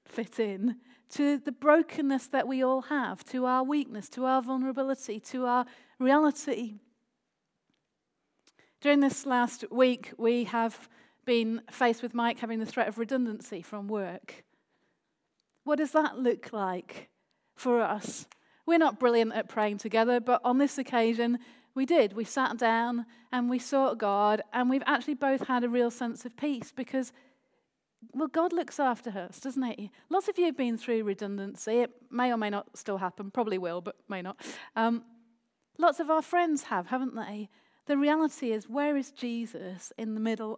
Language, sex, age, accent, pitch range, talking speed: English, female, 40-59, British, 215-260 Hz, 170 wpm